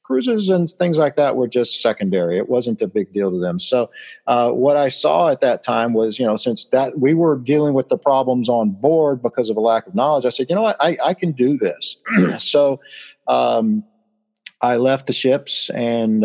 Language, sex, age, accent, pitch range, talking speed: English, male, 50-69, American, 110-140 Hz, 220 wpm